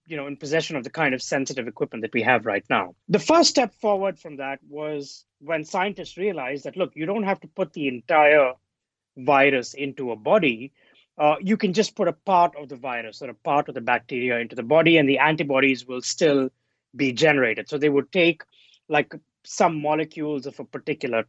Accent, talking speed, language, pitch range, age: Indian, 210 wpm, English, 135-170 Hz, 20-39